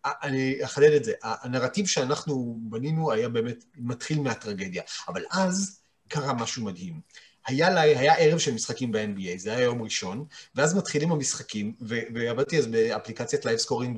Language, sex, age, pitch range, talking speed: Hebrew, male, 30-49, 120-165 Hz, 145 wpm